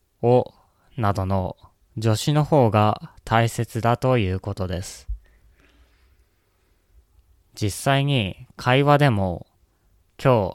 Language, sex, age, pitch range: Japanese, male, 20-39, 90-125 Hz